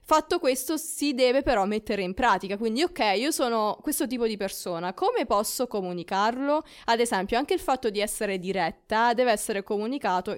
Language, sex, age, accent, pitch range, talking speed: Italian, female, 20-39, native, 190-235 Hz, 175 wpm